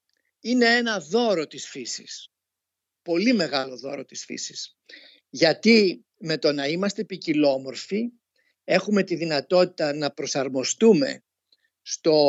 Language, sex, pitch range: Greek, male, 150-210 Hz